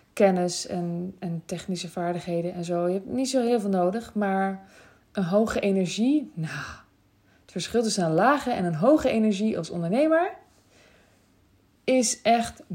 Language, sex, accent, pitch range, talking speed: Dutch, female, Dutch, 170-225 Hz, 150 wpm